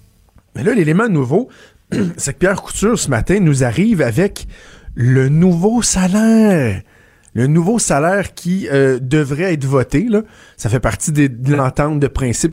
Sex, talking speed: male, 160 wpm